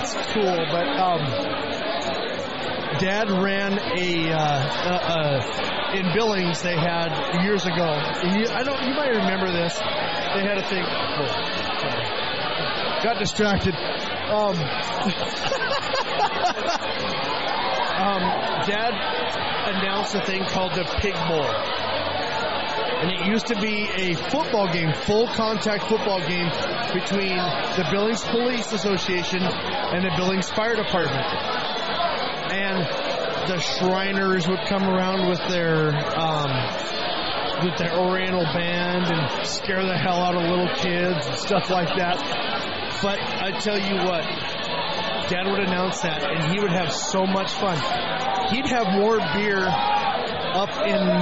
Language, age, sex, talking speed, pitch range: English, 30-49, male, 125 wpm, 175-205 Hz